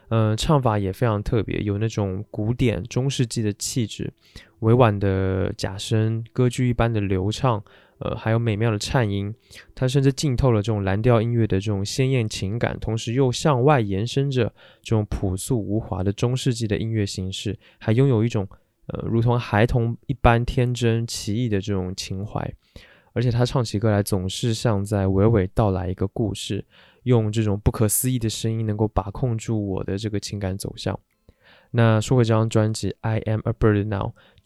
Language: Chinese